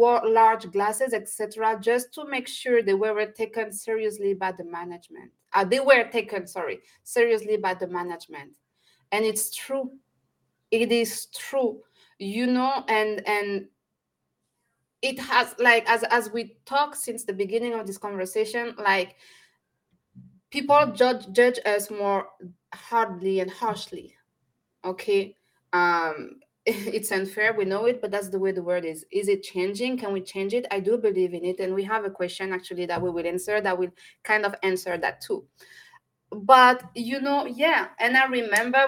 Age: 20-39